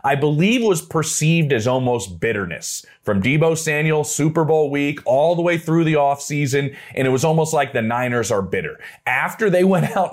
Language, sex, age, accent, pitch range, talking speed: English, male, 30-49, American, 120-160 Hz, 195 wpm